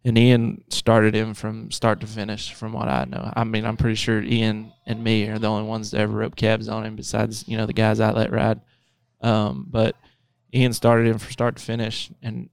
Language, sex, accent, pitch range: English, male, American, 110-120 Hz